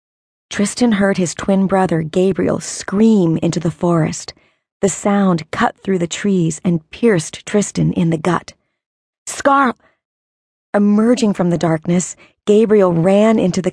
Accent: American